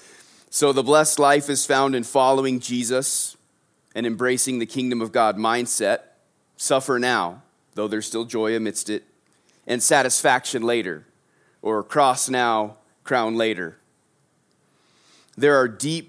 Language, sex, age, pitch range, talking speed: English, male, 30-49, 105-130 Hz, 130 wpm